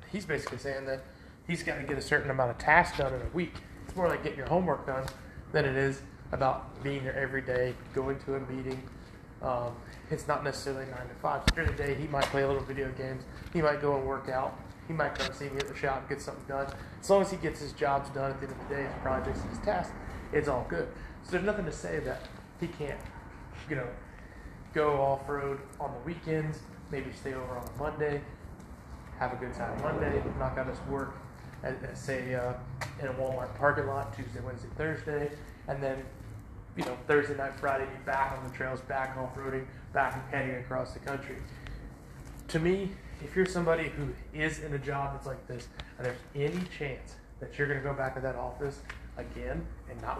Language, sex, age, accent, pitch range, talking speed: English, male, 30-49, American, 130-145 Hz, 215 wpm